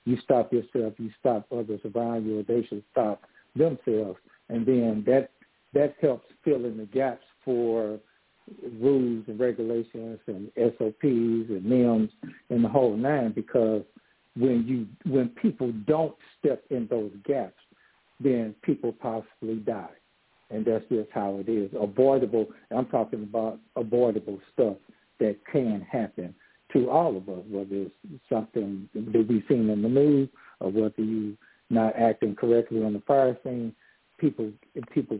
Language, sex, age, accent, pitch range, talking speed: English, male, 60-79, American, 105-120 Hz, 150 wpm